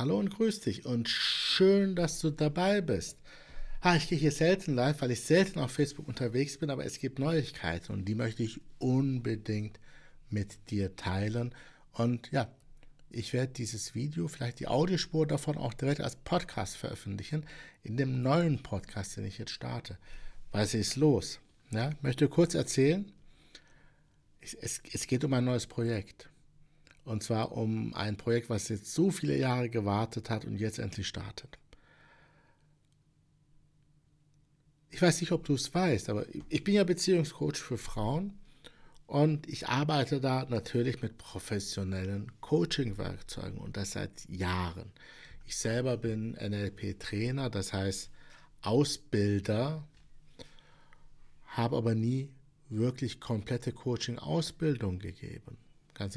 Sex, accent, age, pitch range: male, German, 60-79, 110-150 Hz